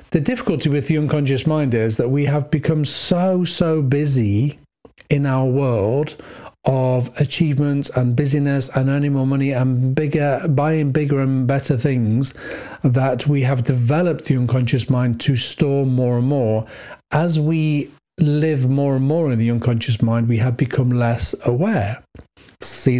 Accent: British